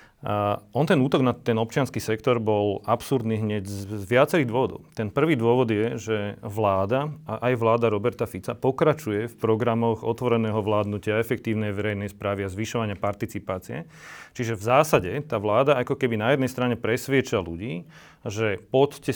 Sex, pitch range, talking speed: male, 110-130 Hz, 160 wpm